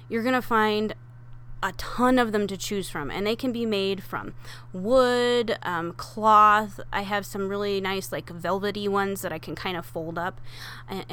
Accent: American